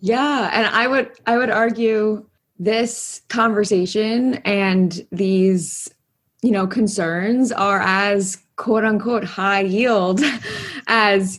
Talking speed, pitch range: 110 wpm, 180-215 Hz